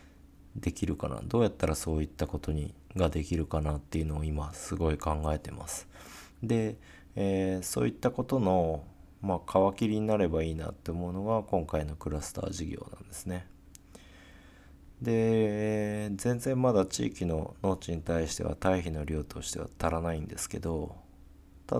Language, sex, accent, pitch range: Japanese, male, native, 75-95 Hz